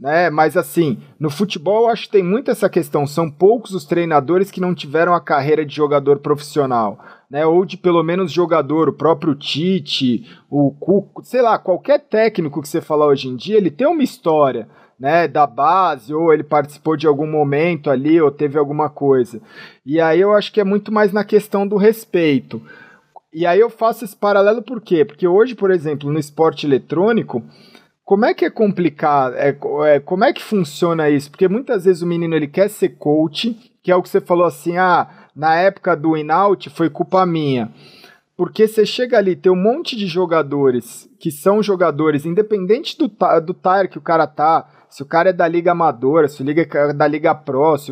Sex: male